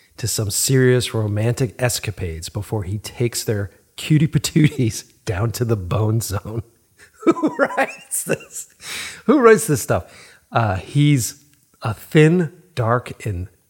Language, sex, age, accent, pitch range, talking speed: English, male, 40-59, American, 100-125 Hz, 125 wpm